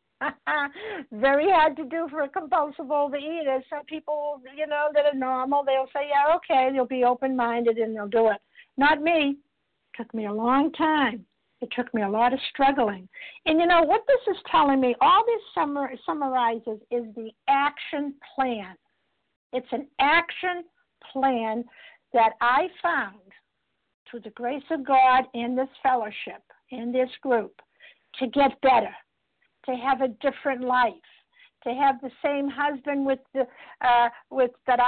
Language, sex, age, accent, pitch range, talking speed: English, female, 60-79, American, 240-295 Hz, 165 wpm